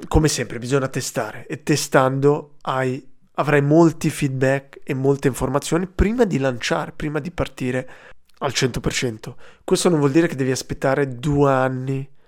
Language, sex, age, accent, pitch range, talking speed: Italian, male, 20-39, native, 130-155 Hz, 145 wpm